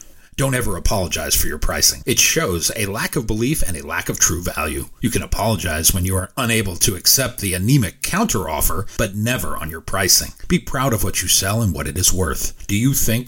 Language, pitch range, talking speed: English, 90-120 Hz, 220 wpm